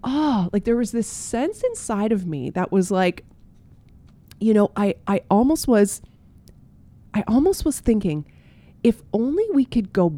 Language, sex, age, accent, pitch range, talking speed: English, female, 30-49, American, 175-230 Hz, 160 wpm